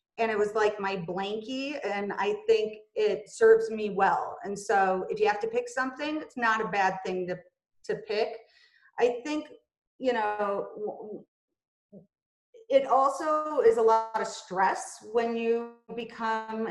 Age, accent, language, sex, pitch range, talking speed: 30-49, American, English, female, 200-250 Hz, 155 wpm